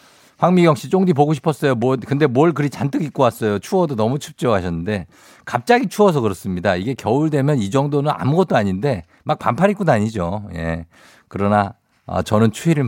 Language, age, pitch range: Korean, 50-69, 90-145 Hz